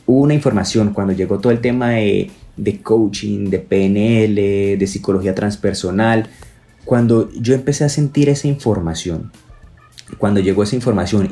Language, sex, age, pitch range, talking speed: Spanish, male, 20-39, 100-125 Hz, 145 wpm